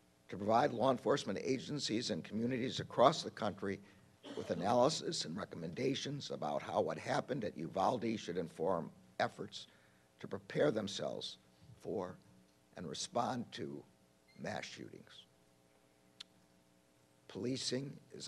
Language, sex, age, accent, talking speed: English, male, 60-79, American, 110 wpm